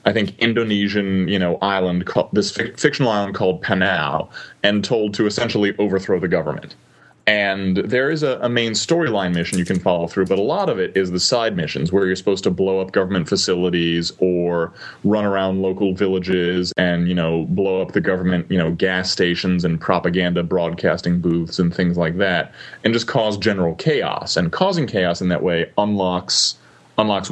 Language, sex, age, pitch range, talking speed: English, male, 20-39, 90-115 Hz, 185 wpm